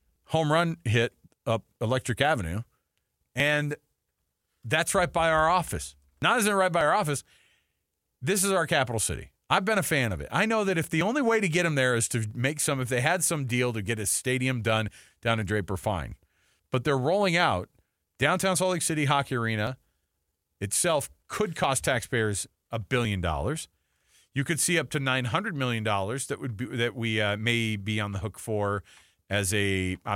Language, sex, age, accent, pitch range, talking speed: English, male, 40-59, American, 100-160 Hz, 195 wpm